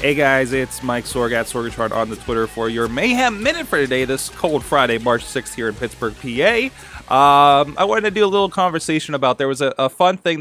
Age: 20-39